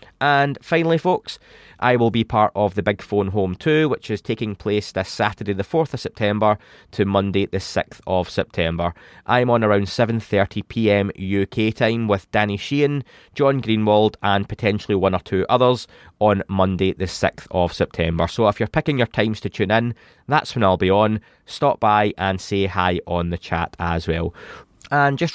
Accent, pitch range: British, 95-120 Hz